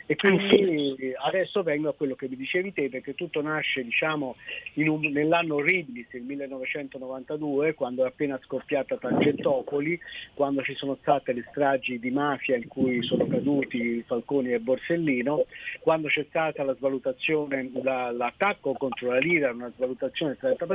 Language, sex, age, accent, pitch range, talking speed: Italian, male, 50-69, native, 130-165 Hz, 150 wpm